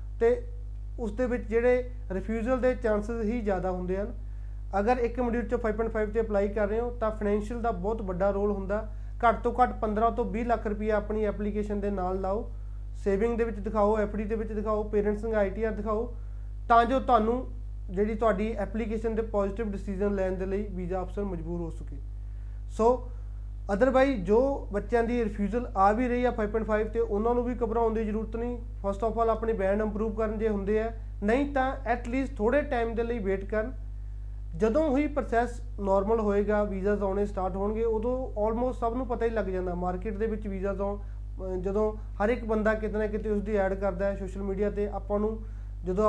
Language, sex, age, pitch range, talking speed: Punjabi, male, 30-49, 195-225 Hz, 180 wpm